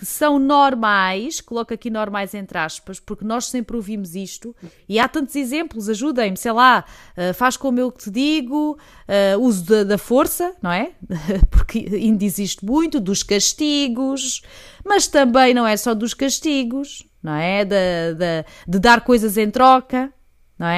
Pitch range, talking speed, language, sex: 200-275 Hz, 160 wpm, Portuguese, female